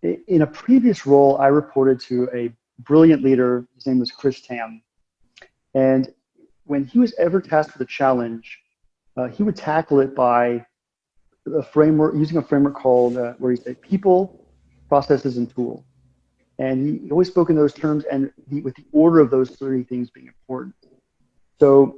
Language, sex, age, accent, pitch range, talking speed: English, male, 40-59, American, 125-150 Hz, 170 wpm